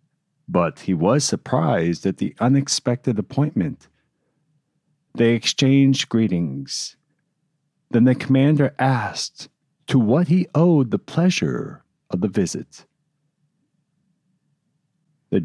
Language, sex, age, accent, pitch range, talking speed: English, male, 50-69, American, 115-160 Hz, 95 wpm